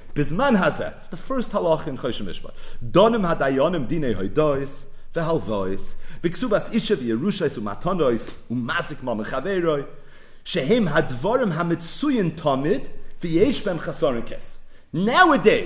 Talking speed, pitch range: 40 wpm, 145-220 Hz